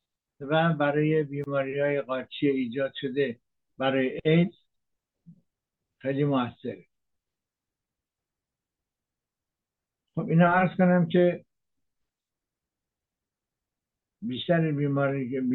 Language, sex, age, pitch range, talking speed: English, male, 60-79, 135-160 Hz, 70 wpm